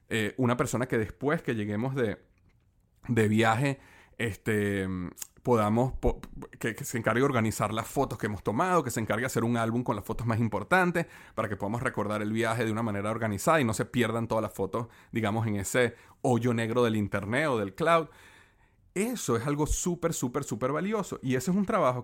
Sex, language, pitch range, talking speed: male, Spanish, 110-150 Hz, 205 wpm